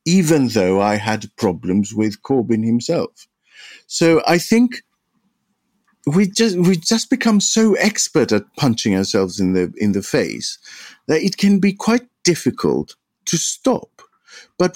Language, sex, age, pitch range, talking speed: English, male, 50-69, 110-180 Hz, 140 wpm